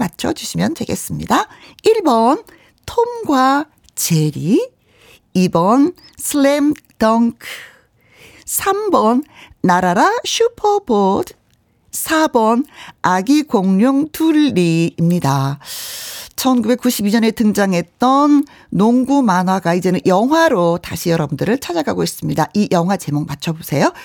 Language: Korean